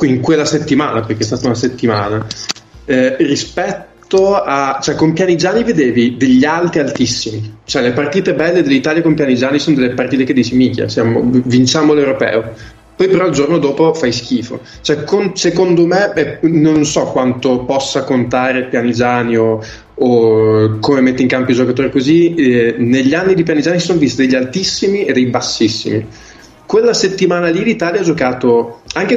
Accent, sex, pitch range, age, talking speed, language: native, male, 125-160 Hz, 20-39, 165 wpm, Italian